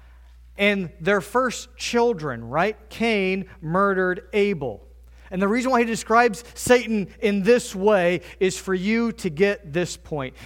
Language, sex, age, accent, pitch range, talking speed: English, male, 40-59, American, 125-195 Hz, 145 wpm